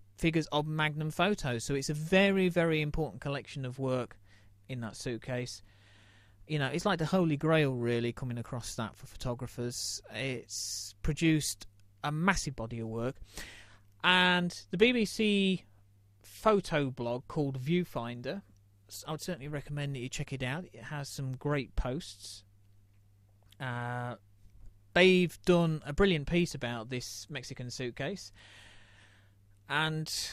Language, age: English, 30-49